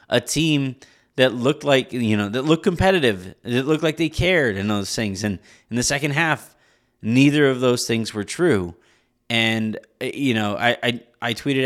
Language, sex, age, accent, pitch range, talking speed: English, male, 30-49, American, 110-140 Hz, 185 wpm